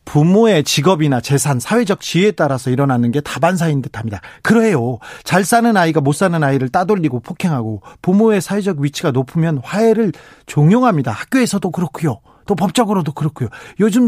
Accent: native